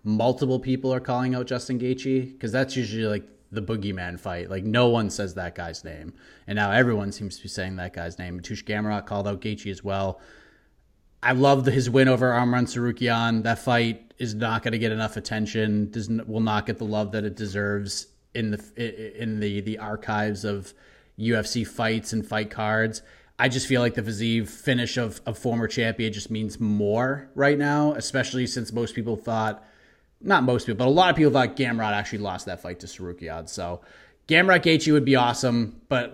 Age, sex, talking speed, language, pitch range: 30-49, male, 200 wpm, English, 105-130 Hz